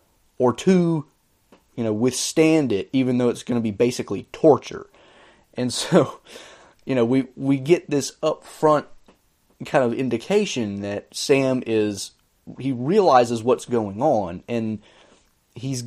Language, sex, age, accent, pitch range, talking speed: English, male, 30-49, American, 110-135 Hz, 130 wpm